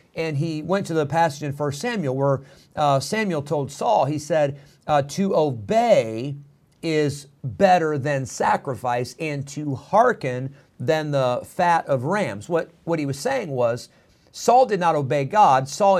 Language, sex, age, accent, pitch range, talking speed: English, male, 50-69, American, 130-160 Hz, 160 wpm